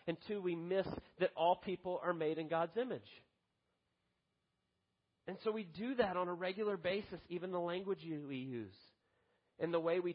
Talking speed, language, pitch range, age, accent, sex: 175 wpm, English, 165-200 Hz, 40-59, American, male